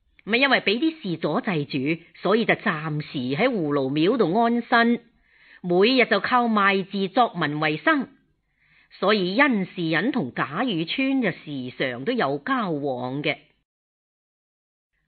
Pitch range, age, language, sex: 160-230 Hz, 40-59, Chinese, female